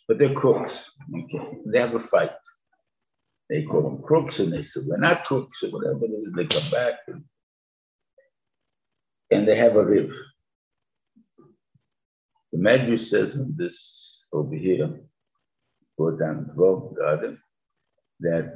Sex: male